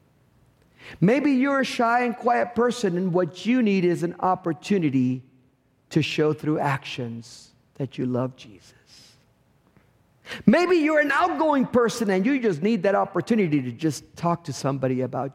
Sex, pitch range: male, 135-225 Hz